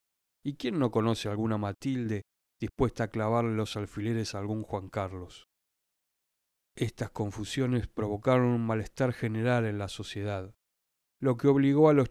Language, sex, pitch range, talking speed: Spanish, male, 100-130 Hz, 145 wpm